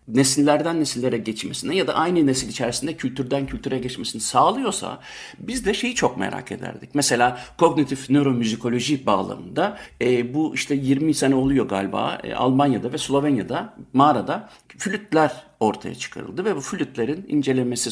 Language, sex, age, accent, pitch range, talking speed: Turkish, male, 60-79, native, 125-170 Hz, 135 wpm